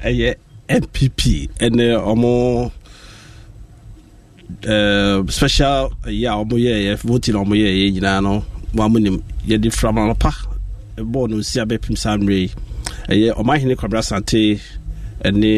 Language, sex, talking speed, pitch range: English, male, 100 wpm, 95-120 Hz